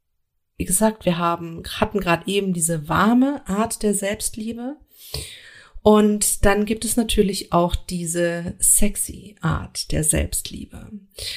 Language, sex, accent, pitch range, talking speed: German, female, German, 160-210 Hz, 120 wpm